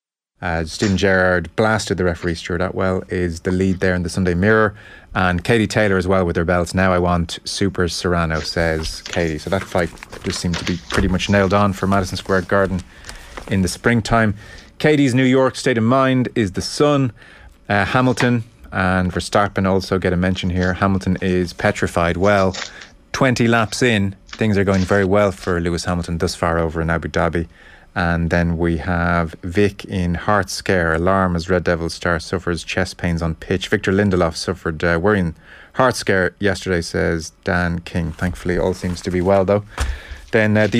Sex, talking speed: male, 185 wpm